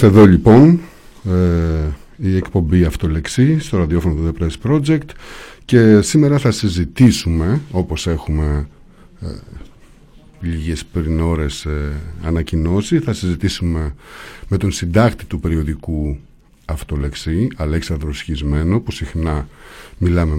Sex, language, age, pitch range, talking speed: male, Greek, 50-69, 80-110 Hz, 100 wpm